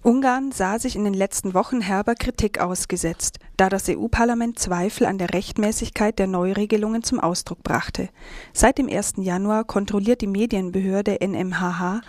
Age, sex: 40-59, female